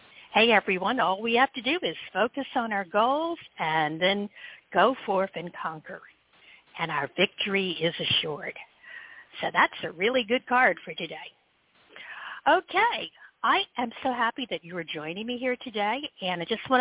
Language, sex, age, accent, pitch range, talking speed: English, female, 50-69, American, 185-275 Hz, 170 wpm